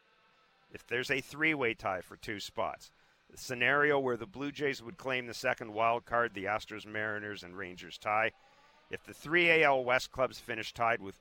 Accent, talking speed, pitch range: American, 185 wpm, 95-125 Hz